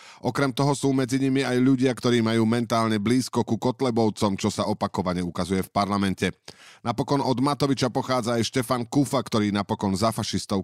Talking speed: 170 wpm